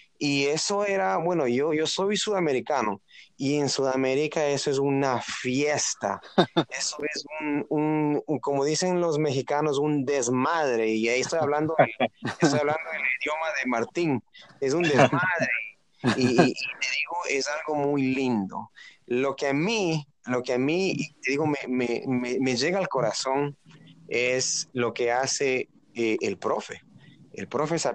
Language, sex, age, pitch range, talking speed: English, male, 30-49, 125-160 Hz, 160 wpm